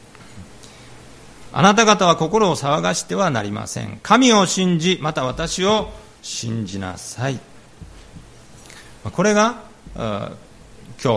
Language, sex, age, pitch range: Japanese, male, 40-59, 115-175 Hz